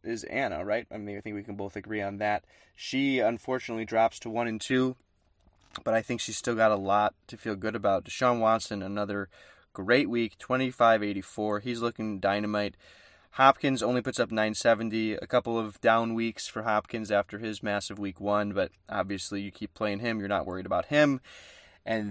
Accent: American